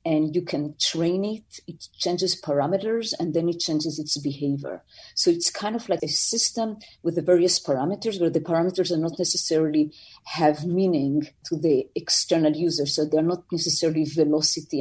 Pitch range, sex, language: 150-180 Hz, female, English